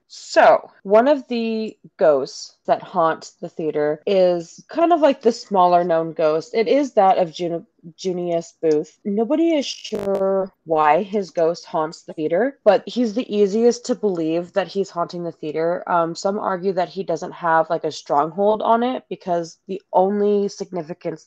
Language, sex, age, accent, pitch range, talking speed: English, female, 20-39, American, 155-205 Hz, 165 wpm